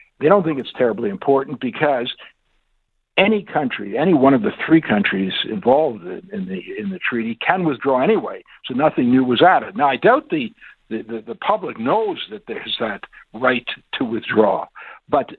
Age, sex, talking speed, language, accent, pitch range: 60-79, male, 185 wpm, English, American, 110-175 Hz